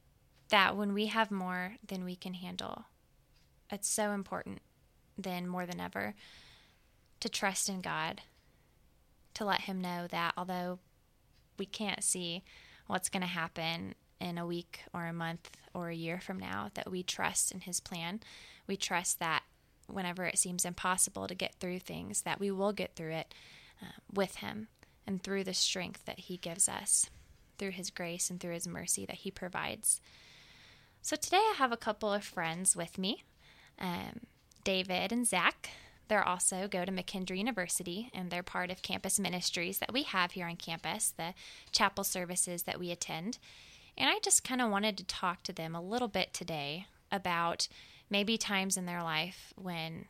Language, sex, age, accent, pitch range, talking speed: English, female, 20-39, American, 175-200 Hz, 175 wpm